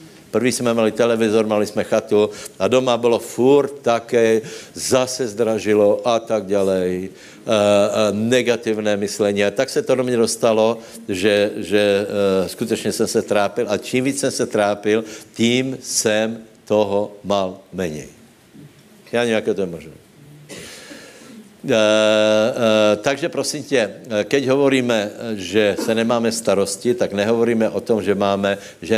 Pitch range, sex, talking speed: 100-120 Hz, male, 145 wpm